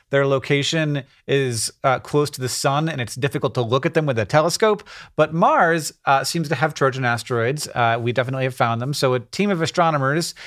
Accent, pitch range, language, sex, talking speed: American, 130-165 Hz, English, male, 210 wpm